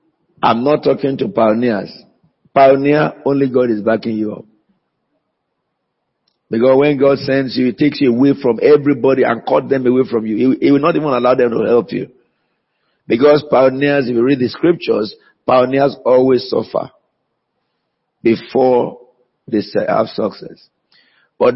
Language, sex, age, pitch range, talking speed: English, male, 50-69, 120-145 Hz, 150 wpm